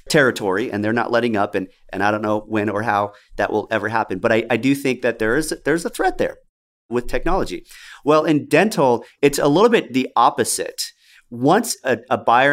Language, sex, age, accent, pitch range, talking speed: English, male, 40-59, American, 105-140 Hz, 215 wpm